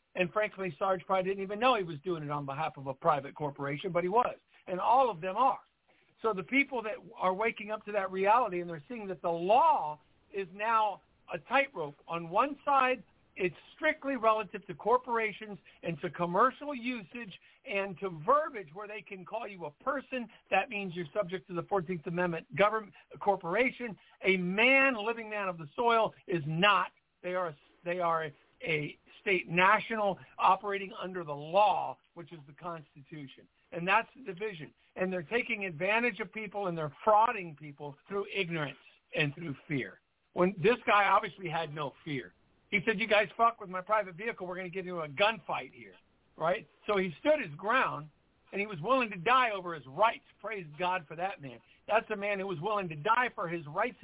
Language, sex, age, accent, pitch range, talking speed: English, male, 60-79, American, 165-220 Hz, 195 wpm